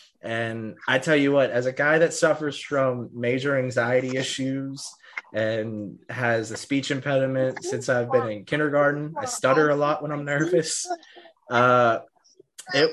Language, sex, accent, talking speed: English, male, American, 155 wpm